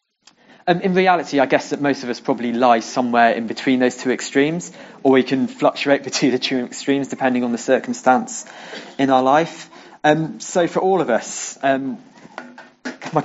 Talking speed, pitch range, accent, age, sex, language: 180 wpm, 125-155 Hz, British, 20-39, male, English